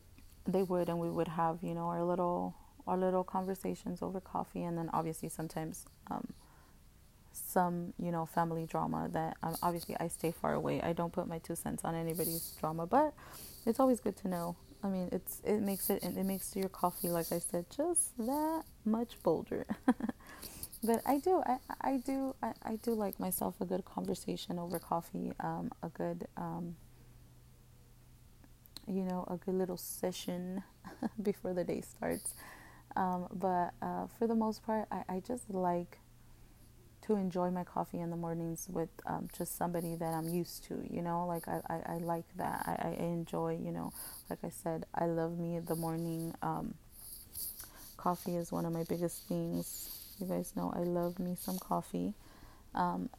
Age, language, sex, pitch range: 20-39, English, female, 120-190 Hz